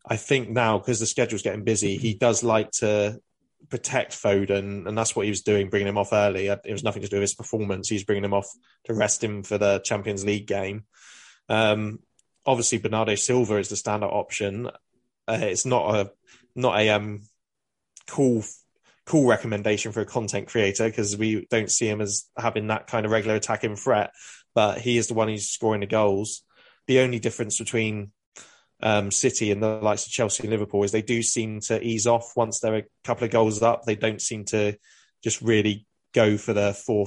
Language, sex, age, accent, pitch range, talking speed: English, male, 20-39, British, 105-115 Hz, 200 wpm